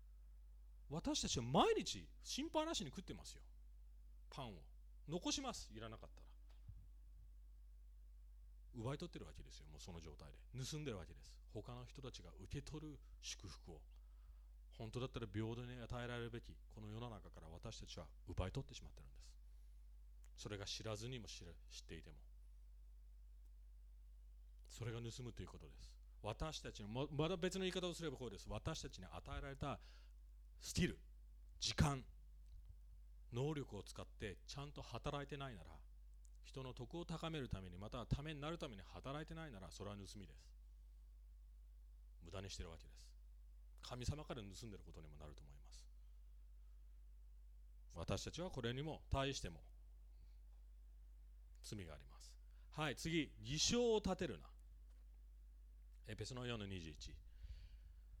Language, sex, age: English, male, 40-59